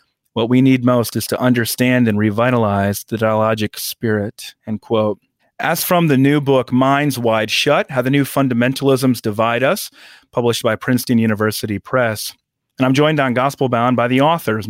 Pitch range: 115-145 Hz